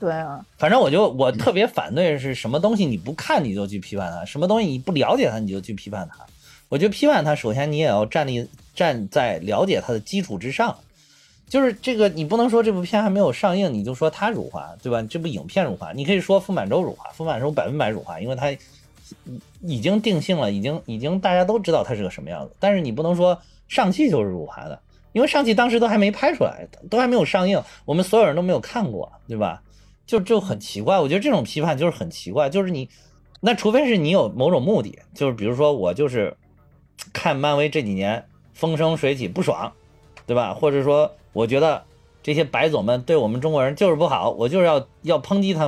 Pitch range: 120-195 Hz